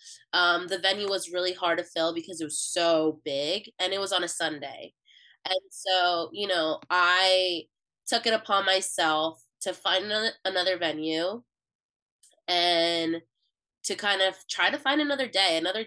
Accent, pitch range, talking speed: American, 165-205 Hz, 160 wpm